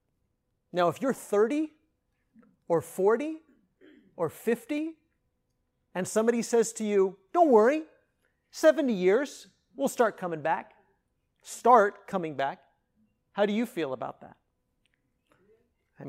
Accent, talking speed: American, 115 wpm